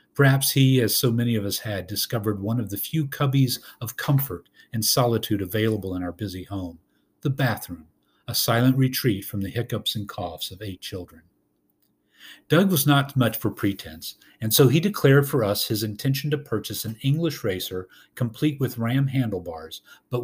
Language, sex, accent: English, male, American